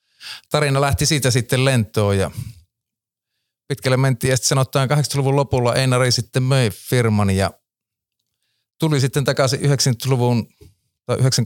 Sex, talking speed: male, 120 wpm